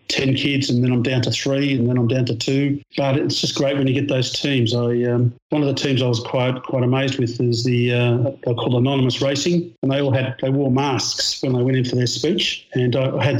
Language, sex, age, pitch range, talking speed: English, male, 40-59, 125-140 Hz, 265 wpm